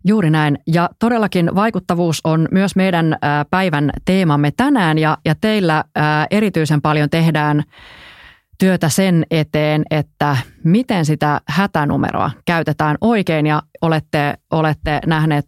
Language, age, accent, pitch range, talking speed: Finnish, 30-49, native, 150-170 Hz, 110 wpm